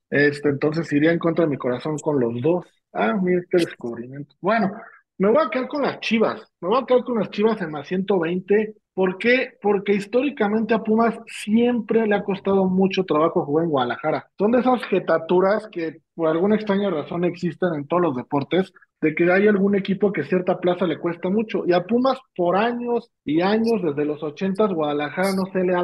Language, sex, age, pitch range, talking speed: Spanish, male, 40-59, 155-205 Hz, 205 wpm